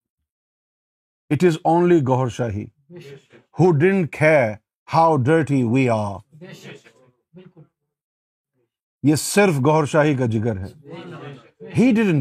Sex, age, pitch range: male, 50-69, 115-160 Hz